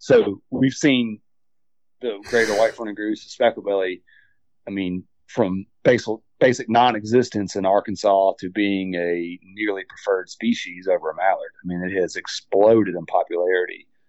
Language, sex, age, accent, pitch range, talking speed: English, male, 30-49, American, 95-120 Hz, 145 wpm